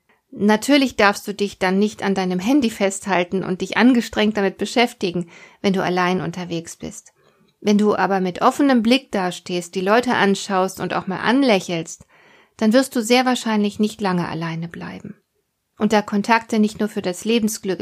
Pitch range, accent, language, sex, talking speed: 185-235 Hz, German, German, female, 170 wpm